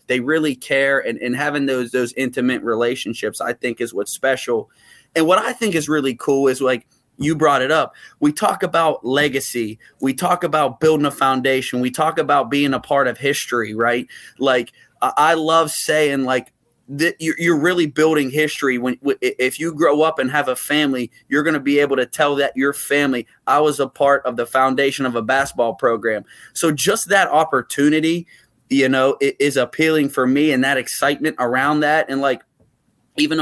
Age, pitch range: 20-39, 130-155 Hz